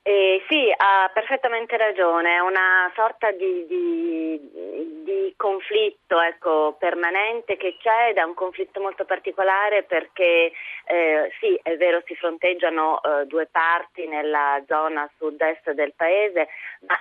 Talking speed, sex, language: 135 wpm, female, Italian